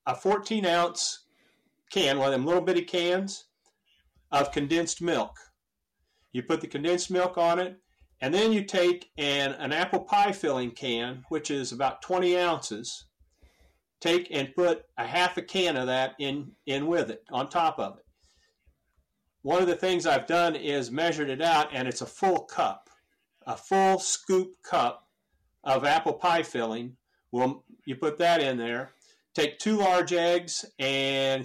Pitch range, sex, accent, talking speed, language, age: 135-180 Hz, male, American, 160 wpm, English, 50-69